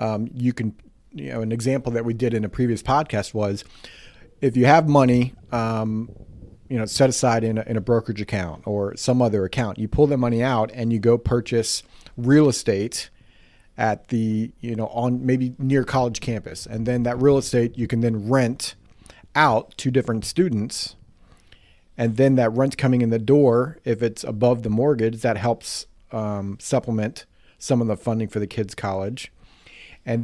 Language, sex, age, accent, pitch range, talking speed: English, male, 40-59, American, 105-130 Hz, 185 wpm